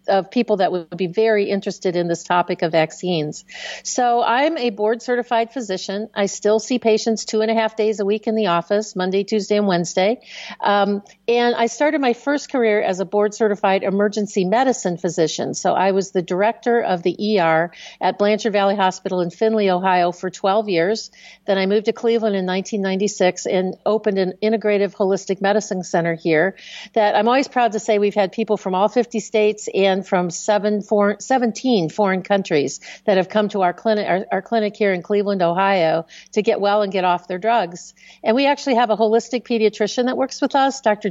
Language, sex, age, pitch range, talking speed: English, female, 50-69, 190-225 Hz, 195 wpm